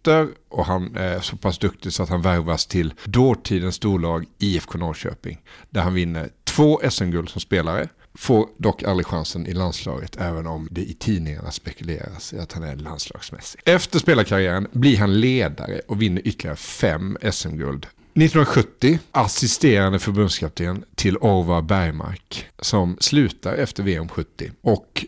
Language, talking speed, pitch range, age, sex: English, 140 wpm, 85-110 Hz, 50-69, male